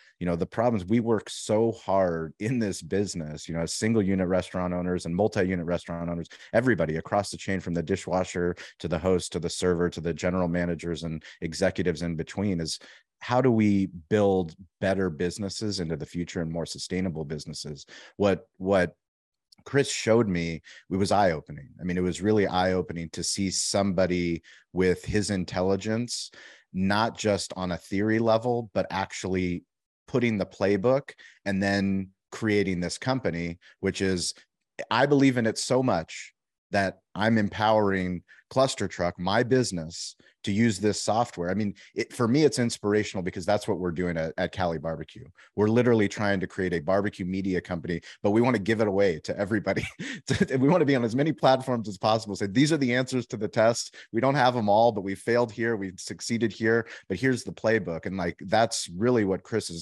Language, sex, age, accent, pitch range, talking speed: English, male, 30-49, American, 90-110 Hz, 185 wpm